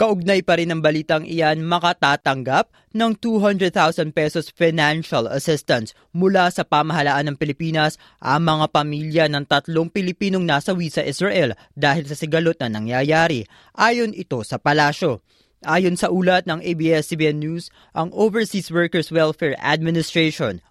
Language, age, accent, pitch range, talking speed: Filipino, 20-39, native, 150-185 Hz, 135 wpm